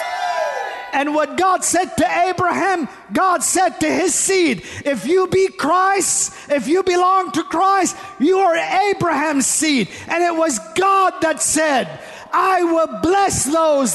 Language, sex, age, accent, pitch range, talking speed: English, male, 50-69, American, 315-375 Hz, 145 wpm